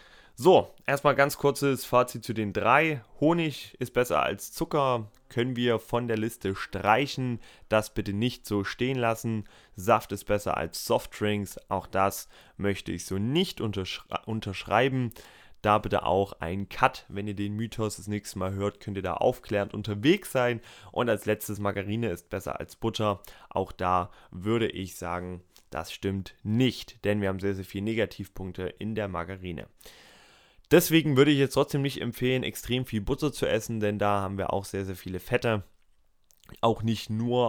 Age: 20-39